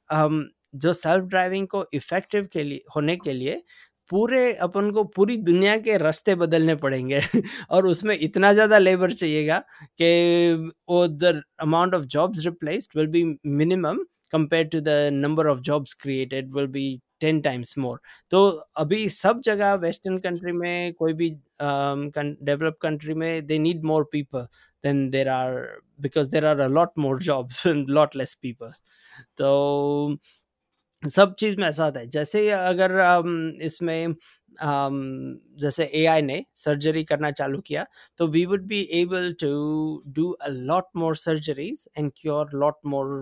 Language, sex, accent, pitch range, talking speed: Hindi, male, native, 145-180 Hz, 145 wpm